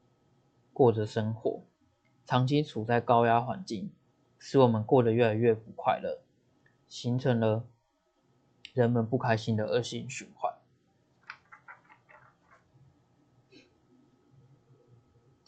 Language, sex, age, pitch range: Chinese, male, 20-39, 115-125 Hz